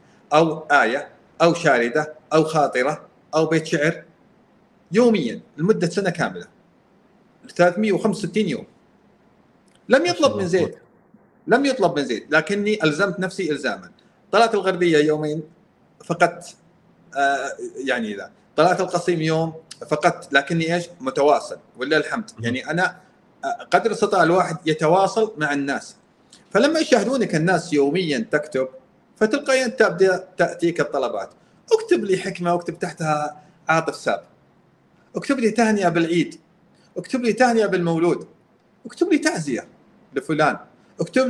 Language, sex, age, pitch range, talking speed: Arabic, male, 40-59, 155-220 Hz, 115 wpm